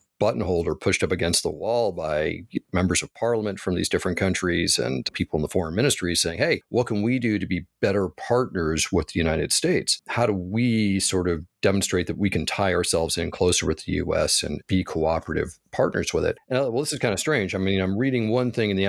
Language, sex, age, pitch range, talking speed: English, male, 40-59, 85-105 Hz, 230 wpm